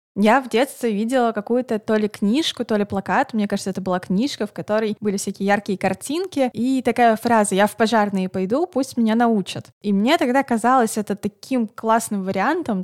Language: Russian